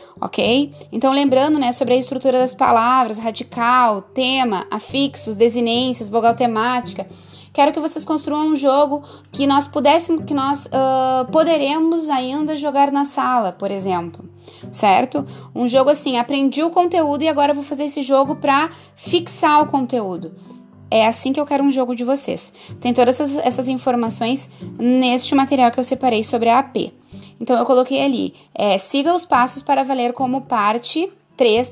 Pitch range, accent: 245-295 Hz, Brazilian